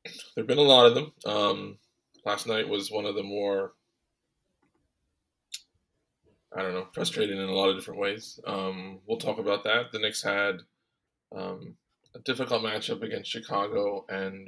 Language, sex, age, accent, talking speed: English, male, 20-39, American, 165 wpm